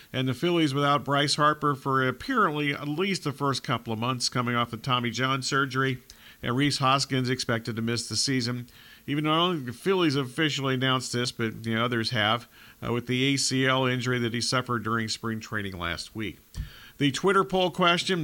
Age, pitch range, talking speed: 50-69, 120-150 Hz, 200 wpm